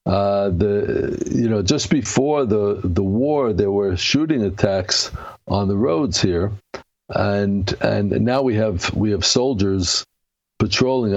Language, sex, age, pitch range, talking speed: English, male, 60-79, 100-120 Hz, 140 wpm